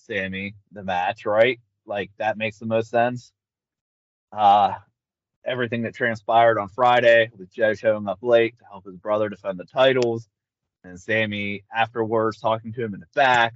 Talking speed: 165 wpm